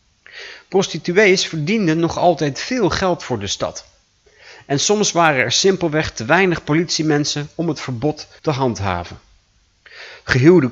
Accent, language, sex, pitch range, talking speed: Dutch, Dutch, male, 120-160 Hz, 130 wpm